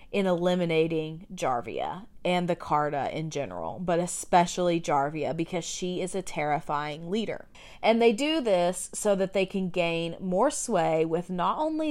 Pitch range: 165-210 Hz